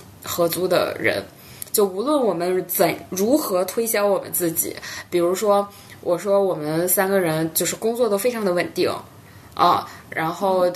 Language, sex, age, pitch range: Chinese, female, 20-39, 170-200 Hz